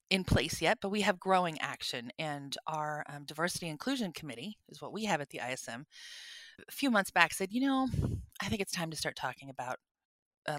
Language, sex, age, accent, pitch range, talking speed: English, female, 30-49, American, 150-185 Hz, 210 wpm